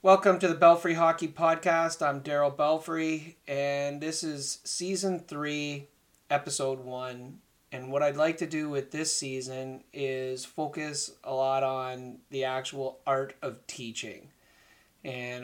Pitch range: 125-145 Hz